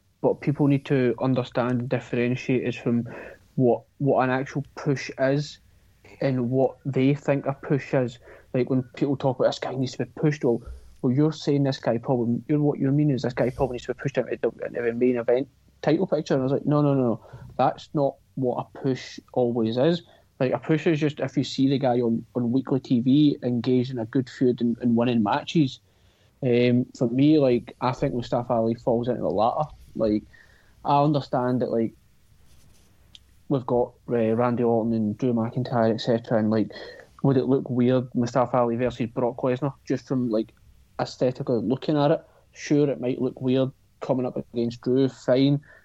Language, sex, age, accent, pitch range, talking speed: English, male, 30-49, British, 120-135 Hz, 195 wpm